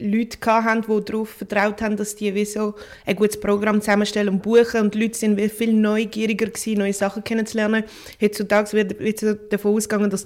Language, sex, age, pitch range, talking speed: German, female, 20-39, 195-215 Hz, 170 wpm